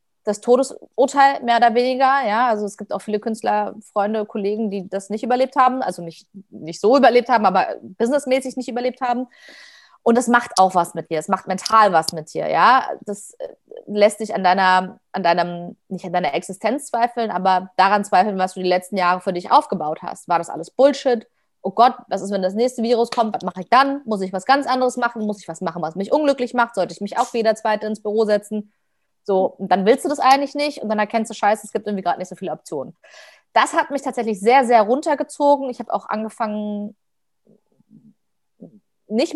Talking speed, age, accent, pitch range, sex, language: 215 wpm, 30-49, German, 195-255 Hz, female, German